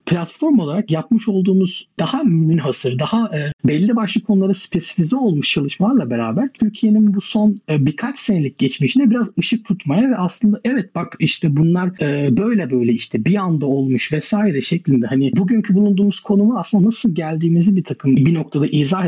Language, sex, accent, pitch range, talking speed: Turkish, male, native, 130-200 Hz, 165 wpm